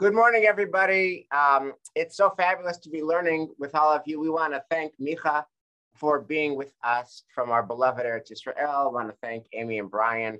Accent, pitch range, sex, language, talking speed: American, 115-155 Hz, male, English, 200 wpm